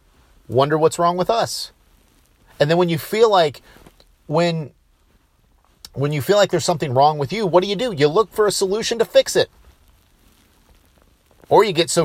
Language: English